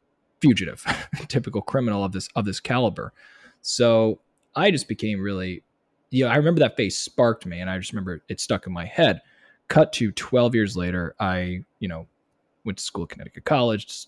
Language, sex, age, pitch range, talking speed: English, male, 20-39, 90-110 Hz, 190 wpm